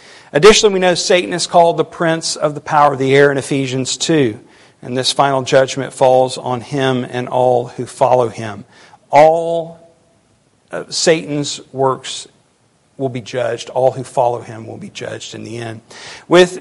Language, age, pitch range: English, 50-69, 135-160 Hz